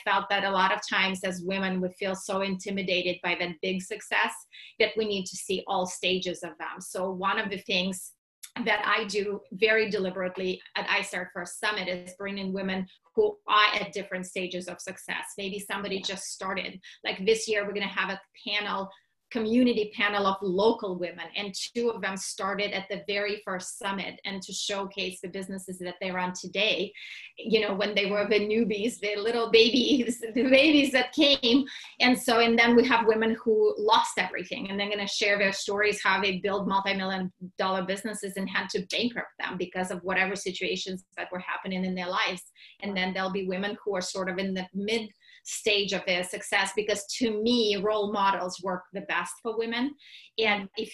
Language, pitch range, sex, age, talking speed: English, 190-220 Hz, female, 30-49, 195 wpm